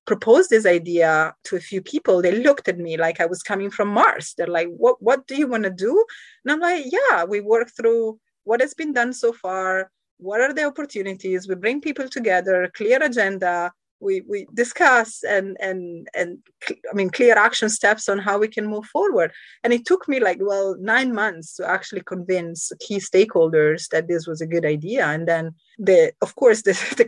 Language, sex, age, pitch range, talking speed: English, female, 30-49, 180-240 Hz, 205 wpm